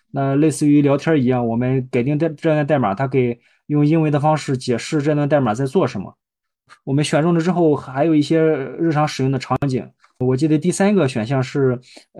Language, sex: Chinese, male